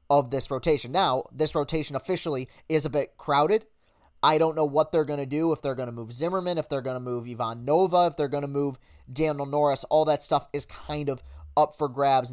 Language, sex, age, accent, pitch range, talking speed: English, male, 20-39, American, 135-160 Hz, 235 wpm